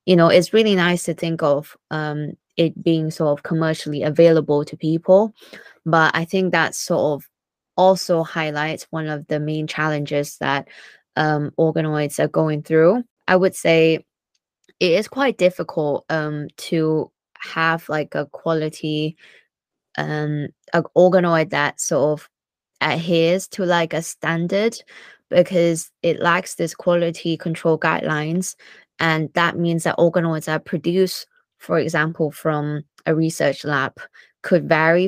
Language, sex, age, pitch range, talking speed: English, female, 20-39, 155-175 Hz, 140 wpm